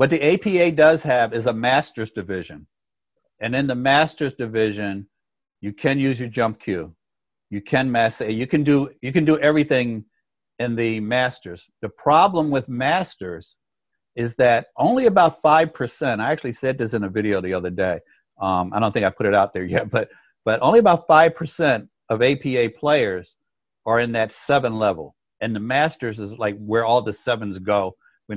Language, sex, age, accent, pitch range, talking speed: English, male, 60-79, American, 100-135 Hz, 180 wpm